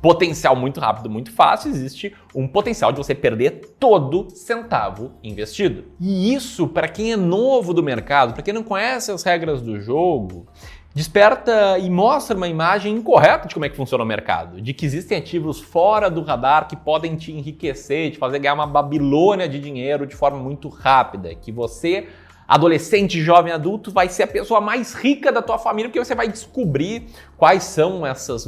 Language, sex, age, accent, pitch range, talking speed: Portuguese, male, 20-39, Brazilian, 125-185 Hz, 180 wpm